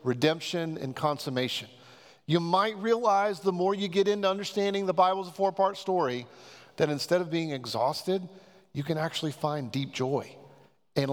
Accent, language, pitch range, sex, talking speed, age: American, English, 135-180 Hz, male, 160 wpm, 40-59